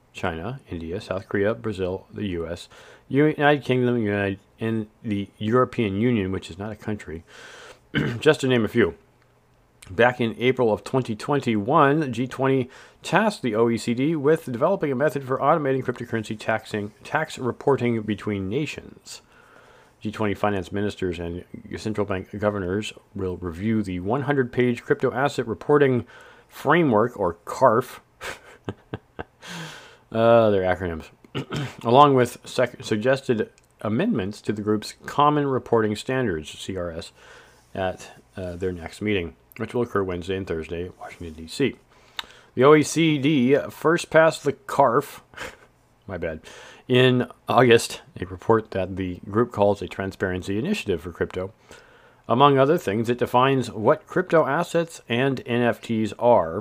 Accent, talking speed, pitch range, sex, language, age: American, 135 wpm, 100-130 Hz, male, English, 40-59